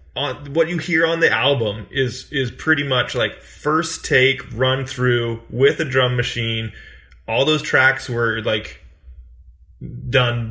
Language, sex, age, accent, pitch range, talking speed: English, male, 20-39, American, 110-130 Hz, 150 wpm